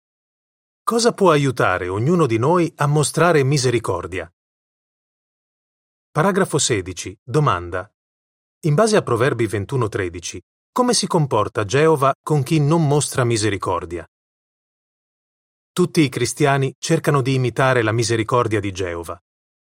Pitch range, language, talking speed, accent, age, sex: 110-155 Hz, Italian, 110 wpm, native, 30-49, male